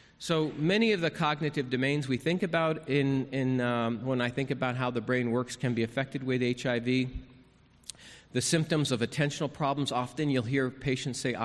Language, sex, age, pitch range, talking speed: English, male, 40-59, 125-150 Hz, 185 wpm